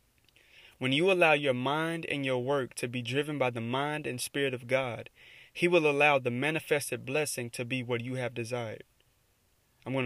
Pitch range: 120-145 Hz